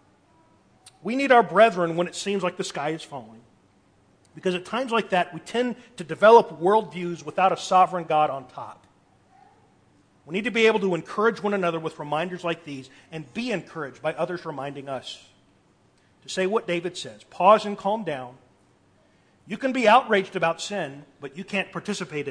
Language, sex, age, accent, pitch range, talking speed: English, male, 40-59, American, 145-205 Hz, 180 wpm